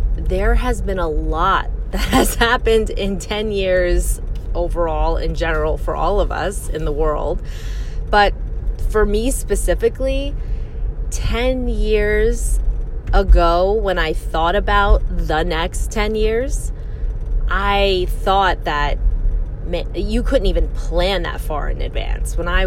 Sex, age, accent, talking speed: female, 20-39, American, 130 wpm